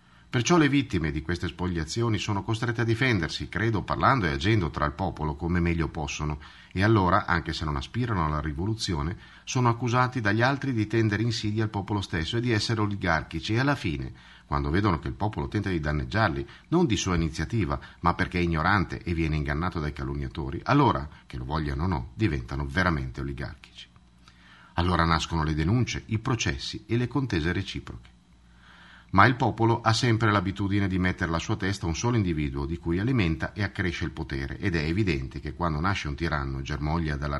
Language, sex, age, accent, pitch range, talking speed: Italian, male, 50-69, native, 75-110 Hz, 185 wpm